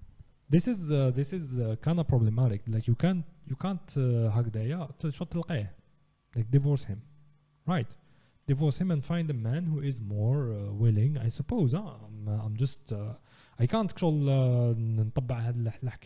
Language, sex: English, male